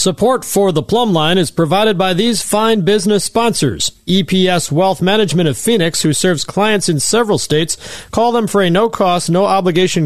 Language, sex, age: English, male, 40-59